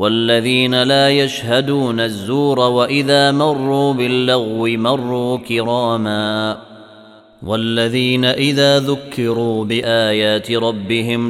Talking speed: 75 wpm